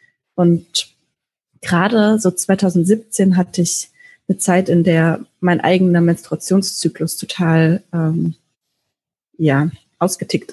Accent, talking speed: German, 95 wpm